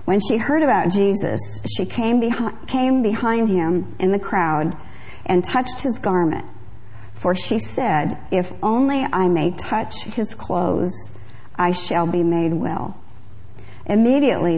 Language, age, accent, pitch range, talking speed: English, 50-69, American, 165-215 Hz, 135 wpm